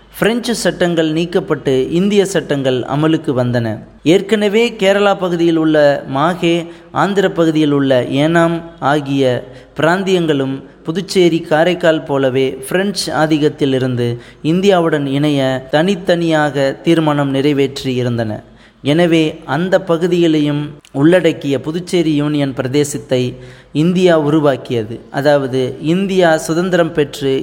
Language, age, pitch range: Tamil, 20-39, 140-175 Hz